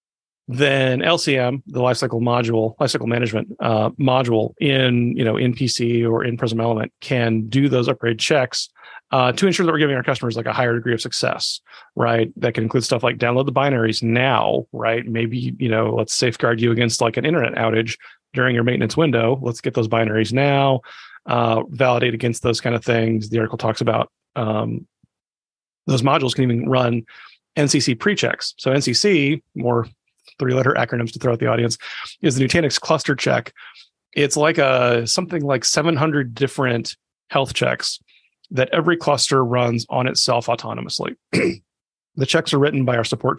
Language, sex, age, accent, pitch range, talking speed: English, male, 30-49, American, 115-140 Hz, 170 wpm